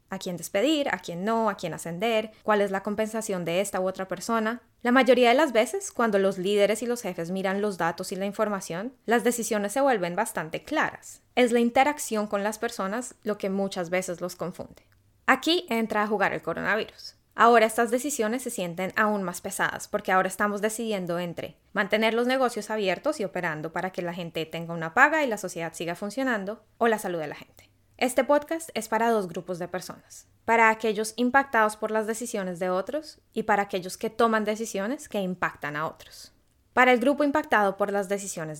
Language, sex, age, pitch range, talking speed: English, female, 20-39, 190-240 Hz, 200 wpm